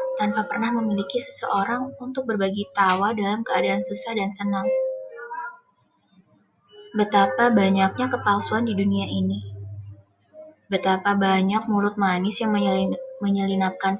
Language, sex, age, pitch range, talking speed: Indonesian, female, 20-39, 185-250 Hz, 105 wpm